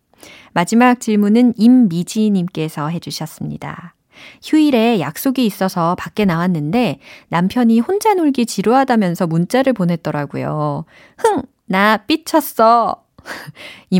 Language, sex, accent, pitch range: Korean, female, native, 175-235 Hz